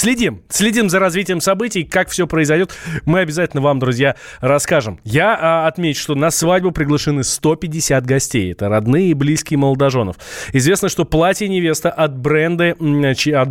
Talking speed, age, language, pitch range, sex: 145 wpm, 20-39, Russian, 125-160 Hz, male